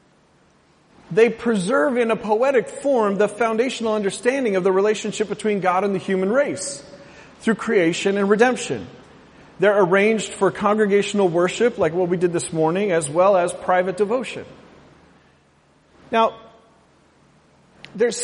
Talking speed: 130 wpm